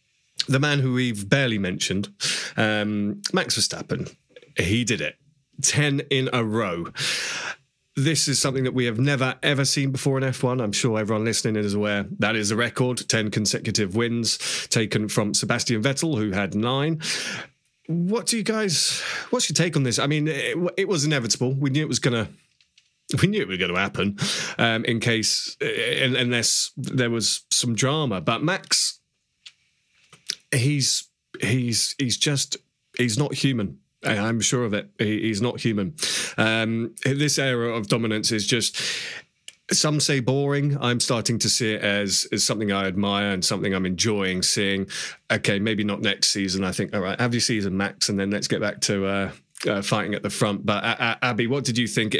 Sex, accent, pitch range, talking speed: male, British, 105-140 Hz, 180 wpm